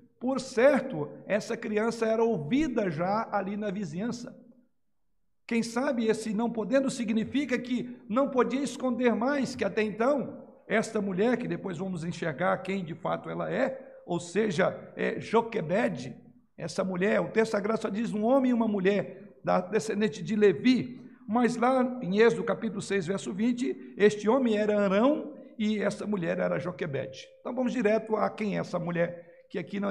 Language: Portuguese